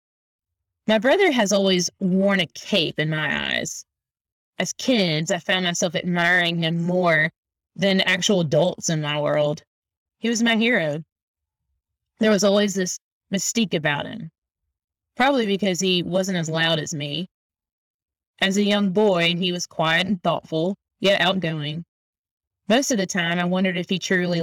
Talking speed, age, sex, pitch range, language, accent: 155 wpm, 20-39, female, 150-195 Hz, English, American